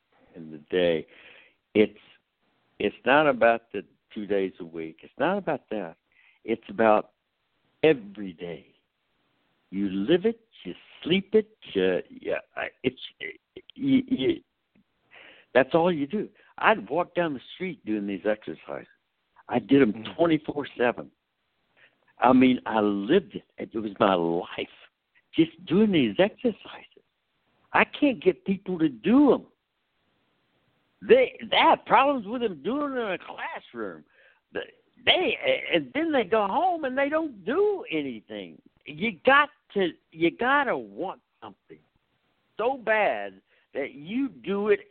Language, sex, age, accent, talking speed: English, male, 60-79, American, 140 wpm